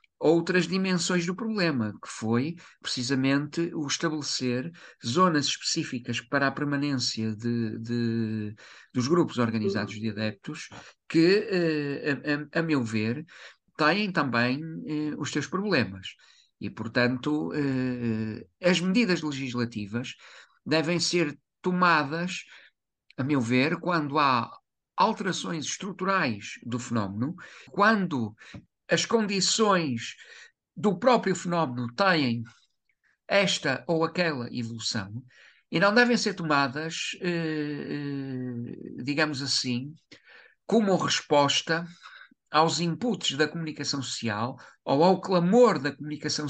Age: 50-69